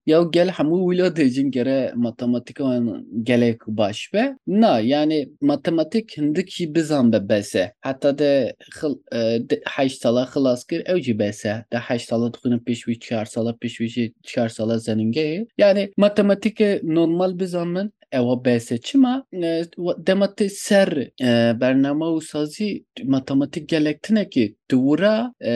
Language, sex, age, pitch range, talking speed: Turkish, male, 30-49, 120-175 Hz, 125 wpm